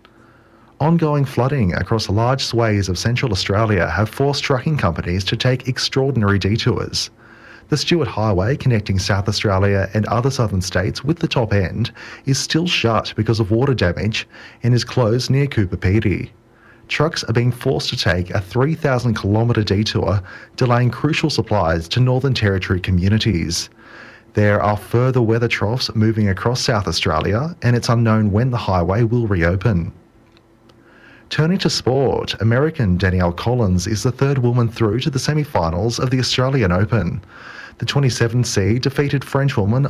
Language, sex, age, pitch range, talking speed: English, male, 30-49, 105-130 Hz, 150 wpm